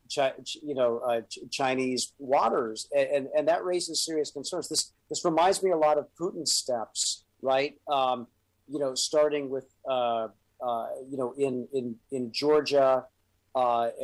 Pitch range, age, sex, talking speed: 125-145 Hz, 40-59, male, 155 wpm